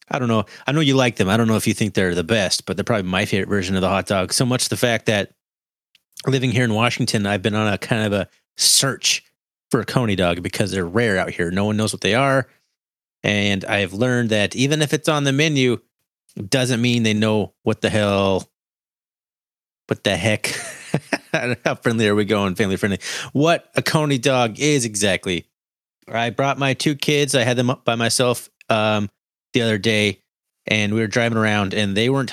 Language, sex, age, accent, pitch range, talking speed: English, male, 30-49, American, 100-125 Hz, 215 wpm